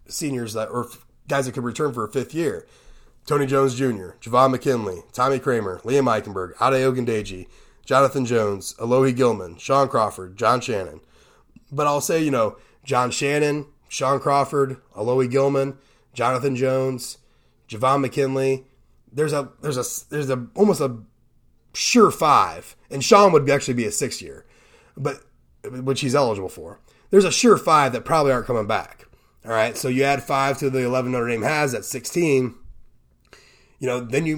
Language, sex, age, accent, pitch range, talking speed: English, male, 30-49, American, 120-145 Hz, 170 wpm